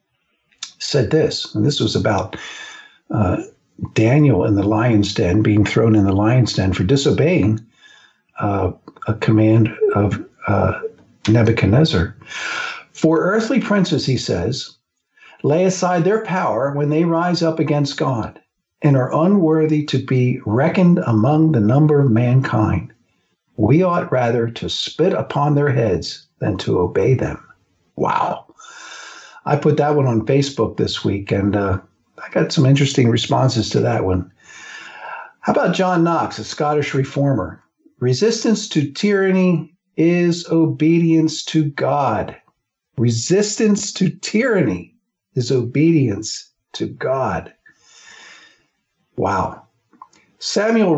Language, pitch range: English, 115-170 Hz